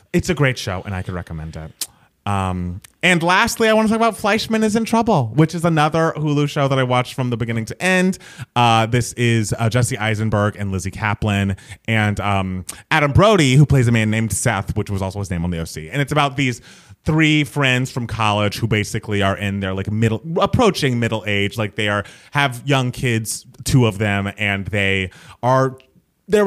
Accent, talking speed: American, 210 wpm